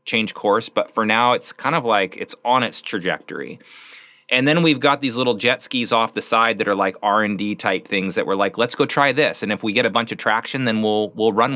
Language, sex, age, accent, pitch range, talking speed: English, male, 30-49, American, 110-150 Hz, 255 wpm